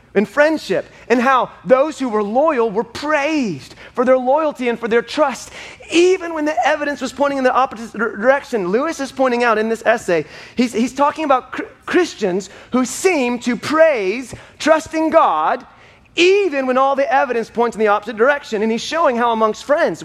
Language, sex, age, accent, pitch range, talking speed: English, male, 30-49, American, 235-310 Hz, 190 wpm